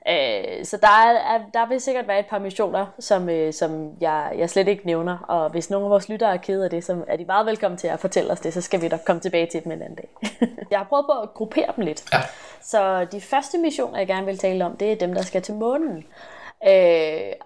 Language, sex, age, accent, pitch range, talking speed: Danish, female, 20-39, native, 180-240 Hz, 250 wpm